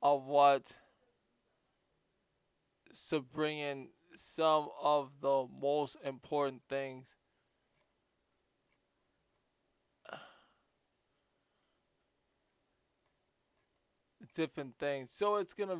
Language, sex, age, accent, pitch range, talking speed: English, male, 20-39, American, 135-160 Hz, 70 wpm